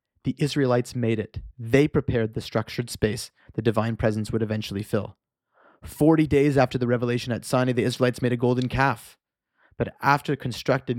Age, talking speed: 30-49, 170 wpm